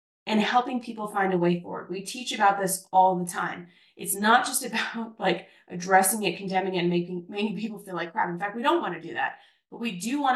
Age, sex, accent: 20-39, female, American